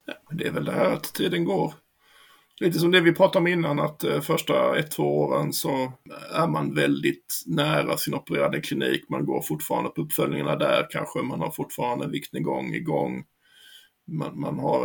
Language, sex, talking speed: Swedish, male, 195 wpm